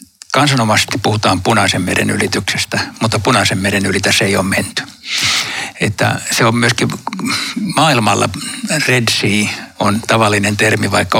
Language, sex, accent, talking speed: Finnish, male, native, 130 wpm